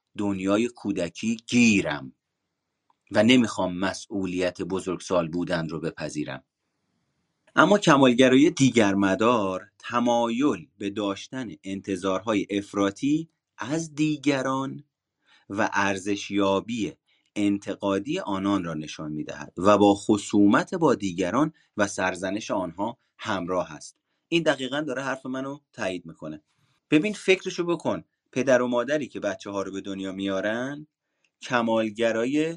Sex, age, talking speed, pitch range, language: male, 30-49, 110 wpm, 100-135 Hz, Persian